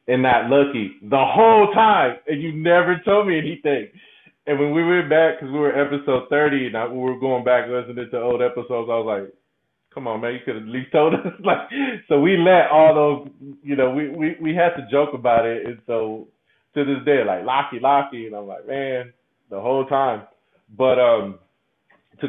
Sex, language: male, English